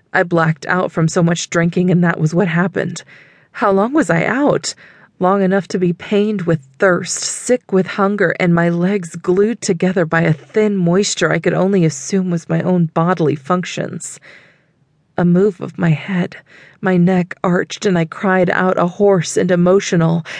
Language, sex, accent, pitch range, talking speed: English, female, American, 155-185 Hz, 180 wpm